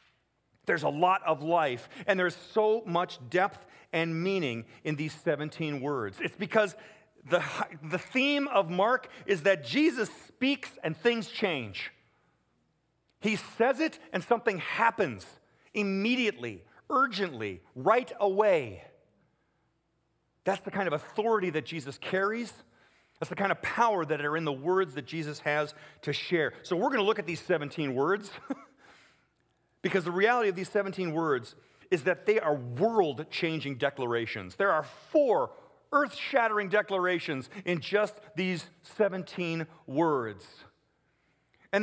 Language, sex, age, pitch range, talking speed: English, male, 40-59, 160-220 Hz, 140 wpm